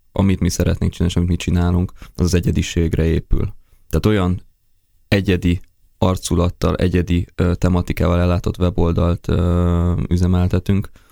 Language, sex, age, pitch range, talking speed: Hungarian, male, 20-39, 85-95 Hz, 105 wpm